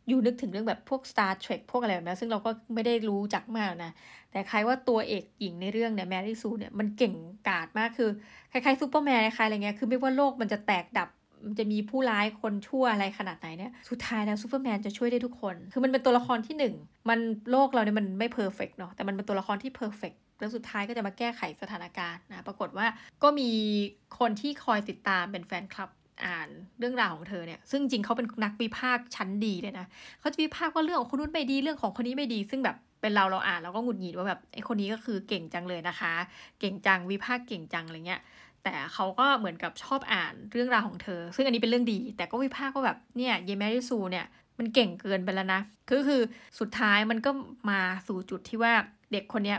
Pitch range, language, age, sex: 195-245 Hz, Thai, 20-39, female